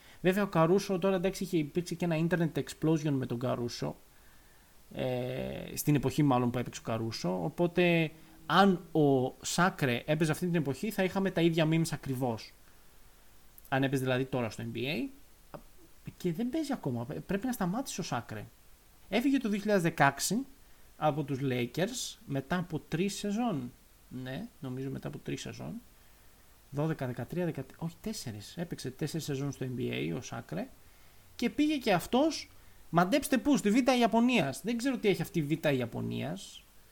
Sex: male